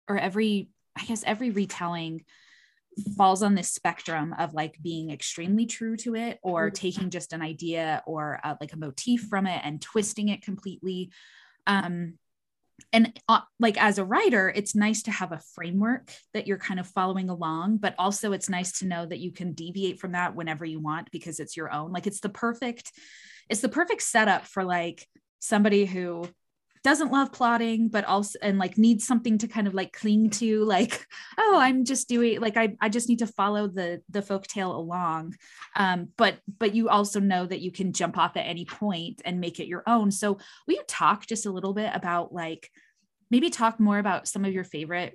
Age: 20-39